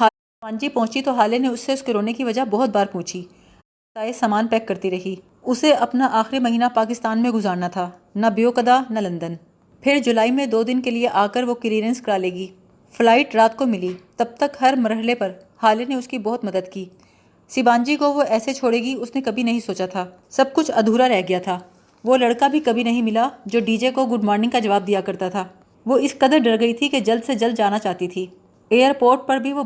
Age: 30-49